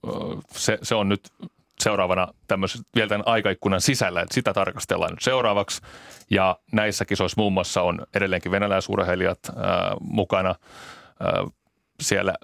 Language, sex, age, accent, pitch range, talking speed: Finnish, male, 30-49, native, 95-105 Hz, 130 wpm